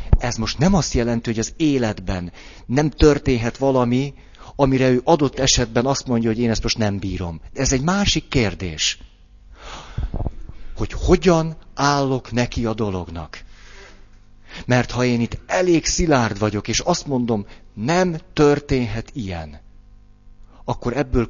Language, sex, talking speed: Hungarian, male, 135 wpm